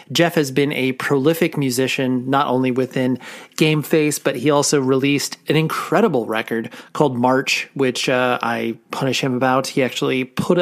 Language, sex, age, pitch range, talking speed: English, male, 30-49, 125-145 Hz, 165 wpm